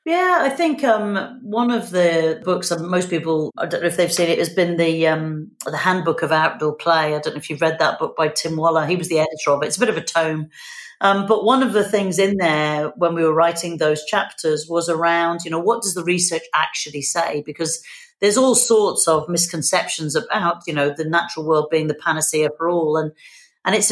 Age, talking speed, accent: 40-59, 235 wpm, British